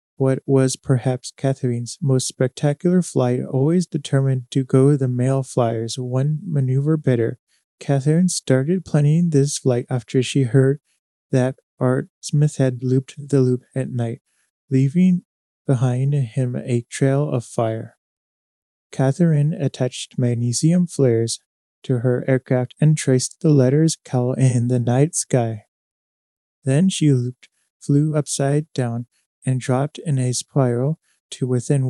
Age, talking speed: 20-39, 130 wpm